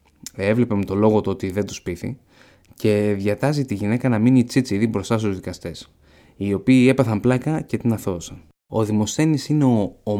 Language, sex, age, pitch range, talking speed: Greek, male, 20-39, 95-120 Hz, 180 wpm